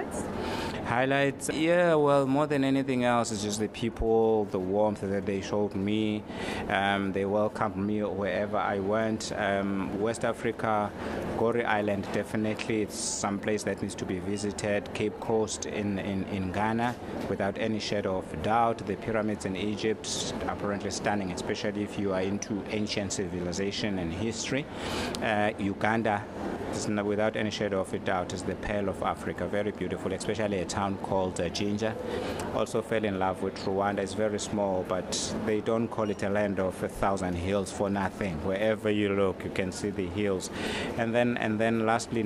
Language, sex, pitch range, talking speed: English, male, 95-110 Hz, 175 wpm